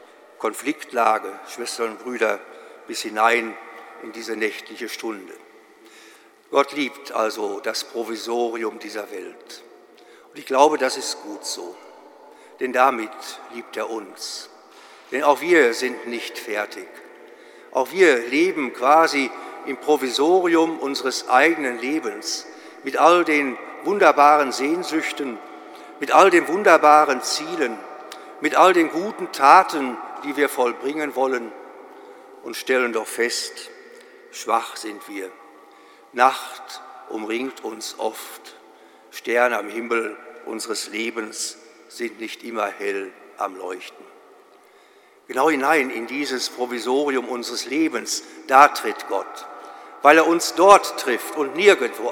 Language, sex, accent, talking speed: German, male, German, 115 wpm